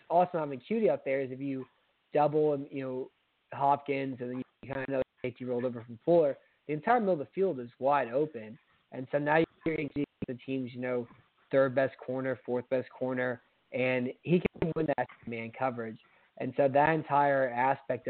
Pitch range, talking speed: 125-145 Hz, 205 wpm